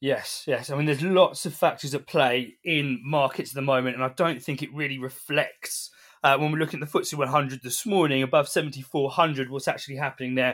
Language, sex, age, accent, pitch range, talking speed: English, male, 20-39, British, 135-175 Hz, 215 wpm